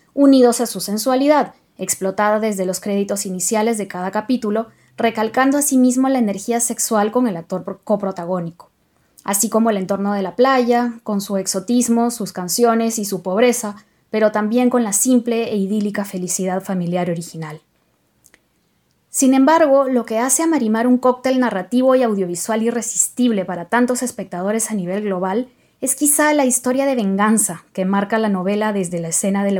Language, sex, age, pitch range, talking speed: Spanish, female, 20-39, 190-245 Hz, 165 wpm